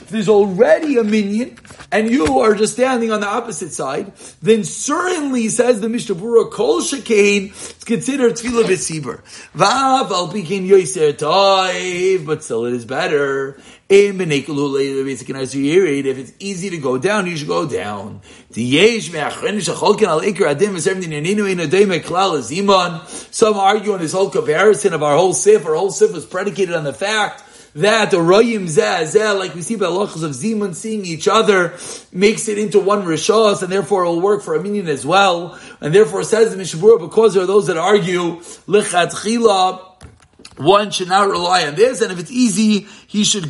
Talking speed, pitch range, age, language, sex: 150 wpm, 170-215 Hz, 30-49, English, male